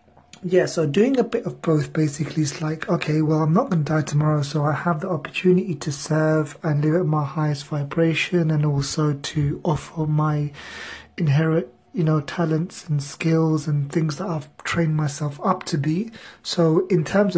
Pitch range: 155-180 Hz